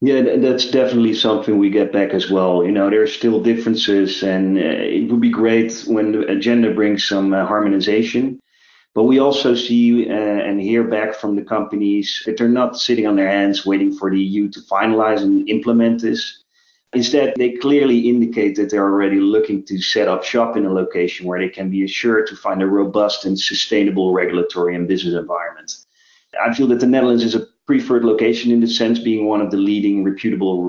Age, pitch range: 30-49, 95-120 Hz